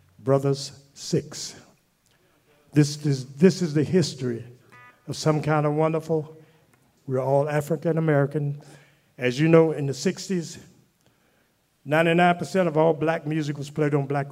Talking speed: 135 wpm